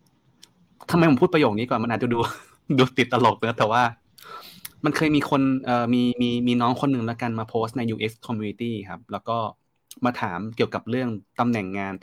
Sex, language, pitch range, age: male, Thai, 105-125 Hz, 20-39